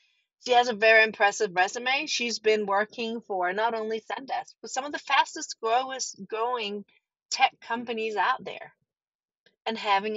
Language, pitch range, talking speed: English, 195-275 Hz, 150 wpm